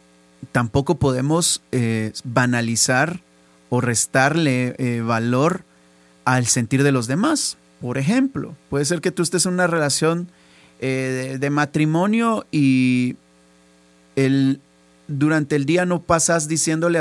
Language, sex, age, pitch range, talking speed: Spanish, male, 30-49, 125-165 Hz, 120 wpm